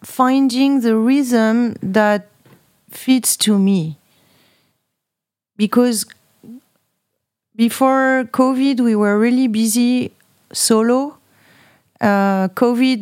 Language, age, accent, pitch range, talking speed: English, 40-59, French, 215-250 Hz, 80 wpm